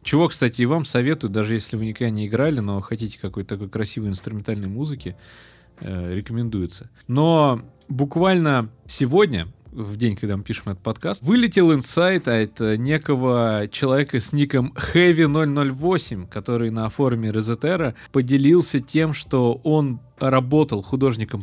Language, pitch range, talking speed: Russian, 110-140 Hz, 135 wpm